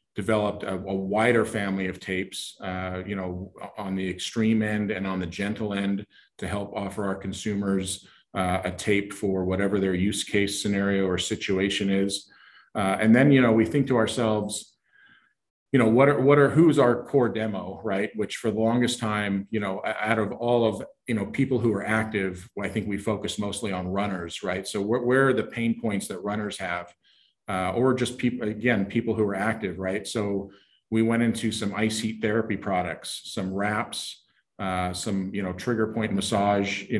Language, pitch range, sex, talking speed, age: English, 95-110 Hz, male, 195 wpm, 40-59